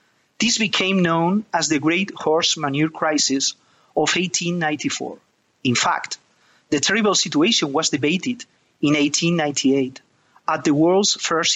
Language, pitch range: English, 150-185 Hz